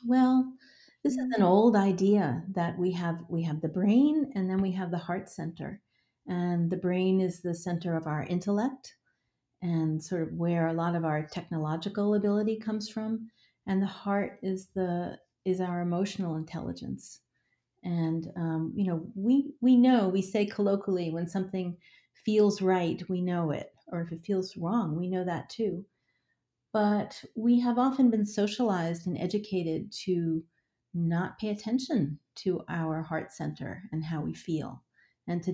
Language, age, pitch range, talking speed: English, 40-59, 170-205 Hz, 165 wpm